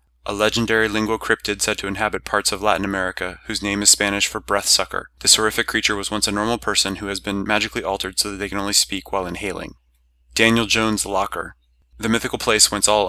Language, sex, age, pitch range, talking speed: English, male, 30-49, 95-105 Hz, 215 wpm